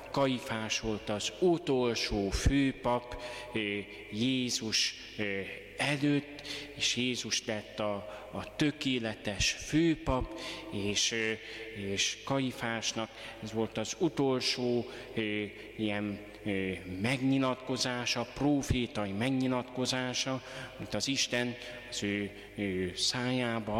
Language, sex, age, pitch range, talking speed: Hungarian, male, 30-49, 110-130 Hz, 80 wpm